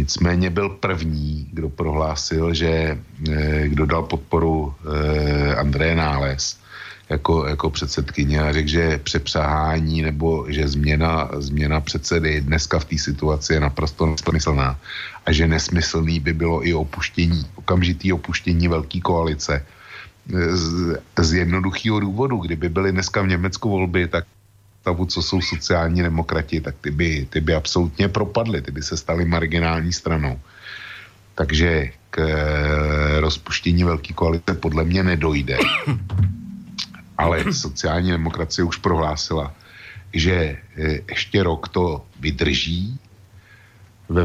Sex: male